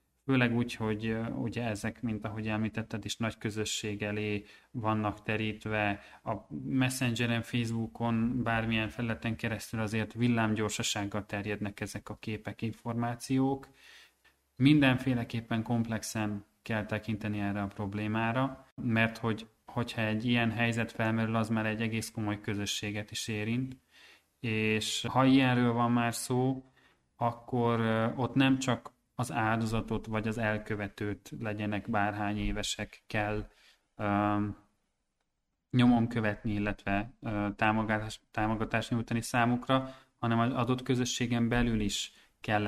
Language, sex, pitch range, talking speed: Hungarian, male, 105-120 Hz, 120 wpm